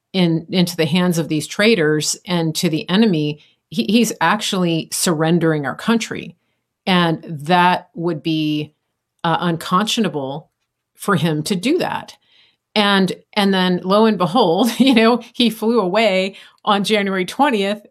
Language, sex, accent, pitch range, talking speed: English, female, American, 165-210 Hz, 135 wpm